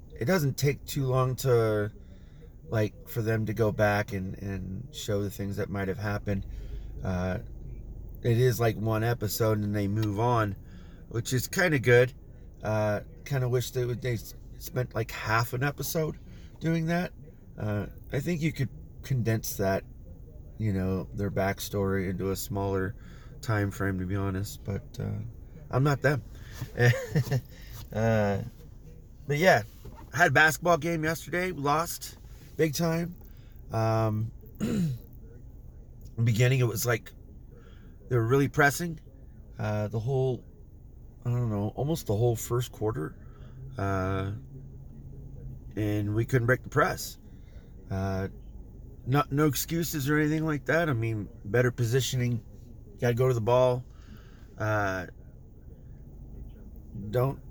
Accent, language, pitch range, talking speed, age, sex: American, English, 100-130 Hz, 140 wpm, 30-49, male